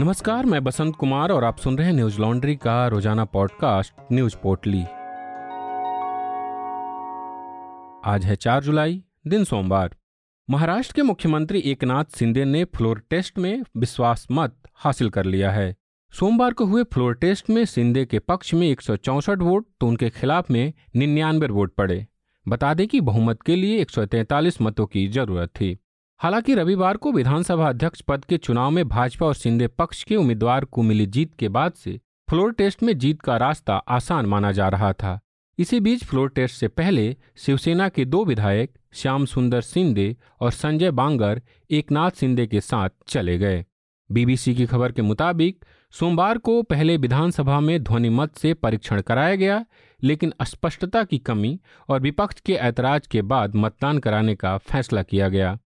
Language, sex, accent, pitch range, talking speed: Hindi, male, native, 115-175 Hz, 165 wpm